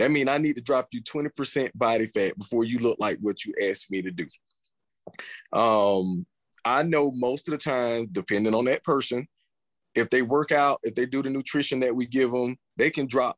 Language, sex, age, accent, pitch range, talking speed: English, male, 30-49, American, 115-140 Hz, 210 wpm